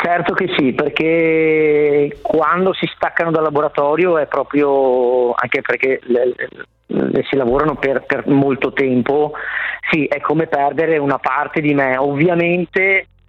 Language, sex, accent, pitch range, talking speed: Italian, male, native, 135-165 Hz, 140 wpm